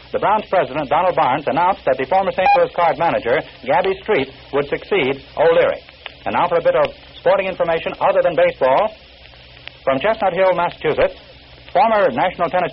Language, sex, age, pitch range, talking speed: English, male, 60-79, 165-205 Hz, 170 wpm